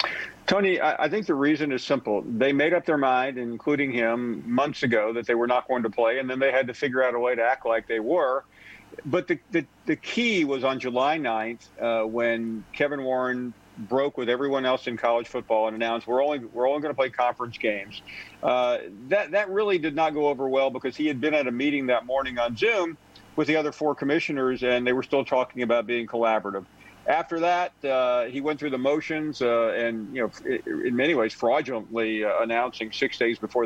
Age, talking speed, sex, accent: 50-69, 220 wpm, male, American